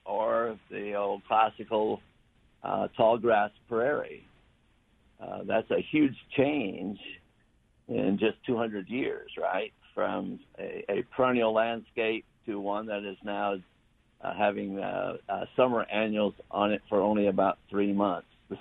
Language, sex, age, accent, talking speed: English, male, 60-79, American, 135 wpm